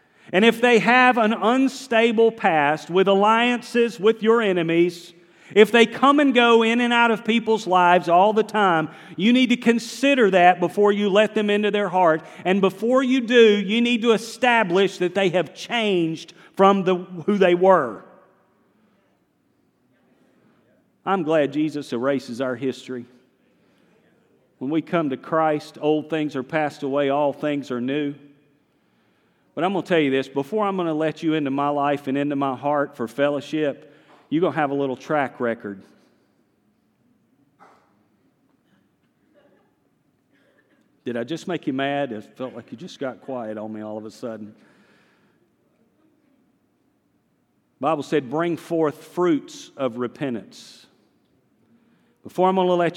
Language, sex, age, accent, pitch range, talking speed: English, male, 40-59, American, 145-210 Hz, 155 wpm